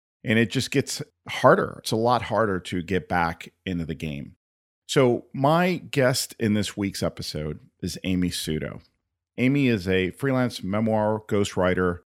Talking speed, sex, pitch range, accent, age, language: 155 wpm, male, 85-105 Hz, American, 40-59, English